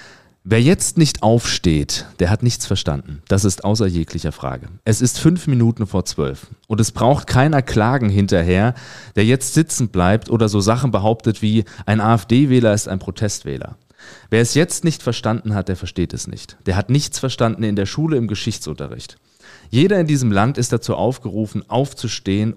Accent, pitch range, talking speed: German, 105-130 Hz, 175 wpm